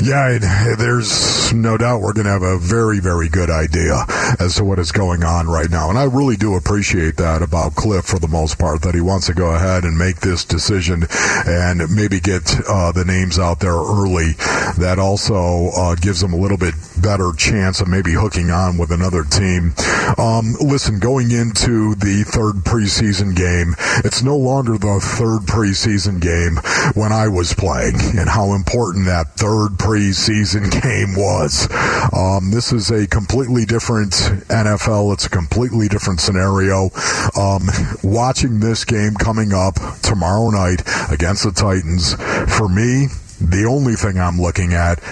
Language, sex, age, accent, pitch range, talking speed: English, male, 50-69, American, 90-110 Hz, 170 wpm